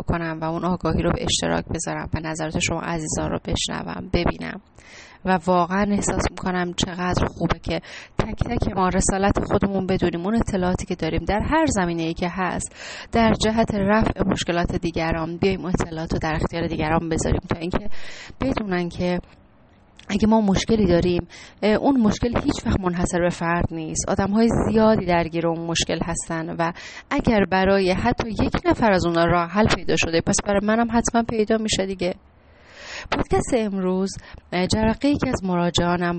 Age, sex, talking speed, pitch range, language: 30-49, female, 160 wpm, 170-210 Hz, Persian